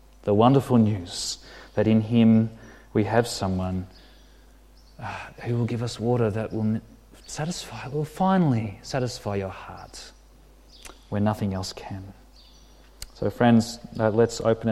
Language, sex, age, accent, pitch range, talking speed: English, male, 30-49, Australian, 100-120 Hz, 120 wpm